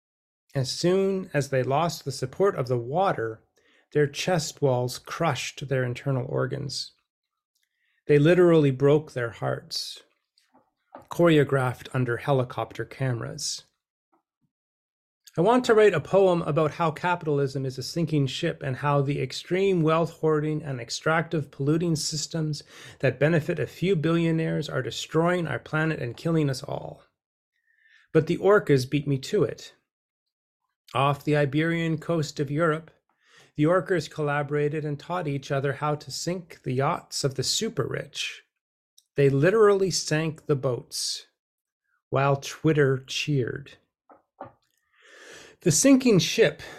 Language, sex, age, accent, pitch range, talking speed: English, male, 30-49, American, 130-165 Hz, 130 wpm